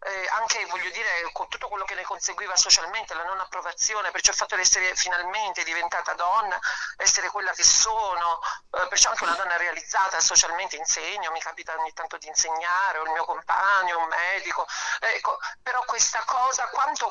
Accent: native